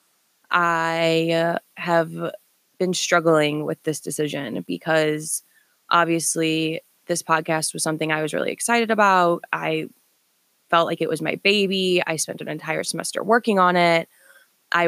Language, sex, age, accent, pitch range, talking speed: English, female, 20-39, American, 160-180 Hz, 135 wpm